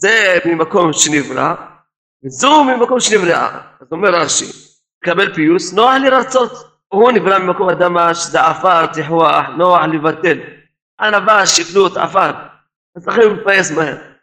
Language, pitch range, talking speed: Hebrew, 160-215 Hz, 120 wpm